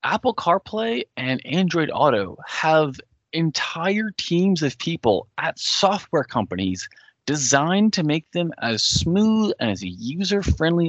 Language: English